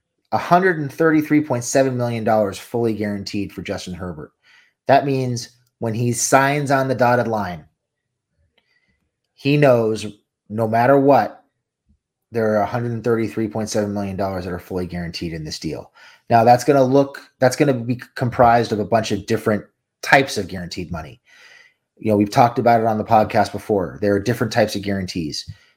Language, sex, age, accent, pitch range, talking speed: English, male, 30-49, American, 105-135 Hz, 155 wpm